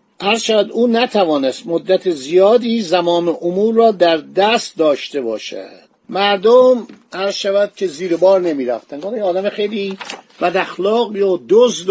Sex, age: male, 50-69